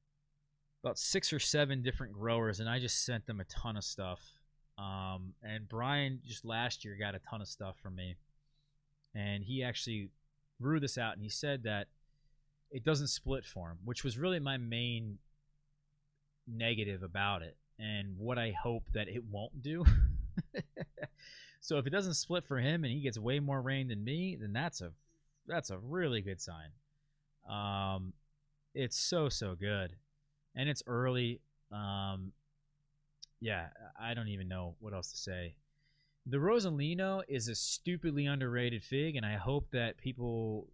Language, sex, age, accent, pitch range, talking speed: English, male, 20-39, American, 110-145 Hz, 165 wpm